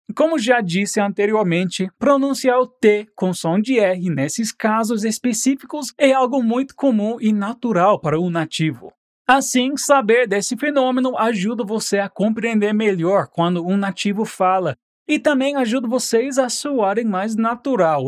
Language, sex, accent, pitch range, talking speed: Portuguese, male, Brazilian, 190-255 Hz, 145 wpm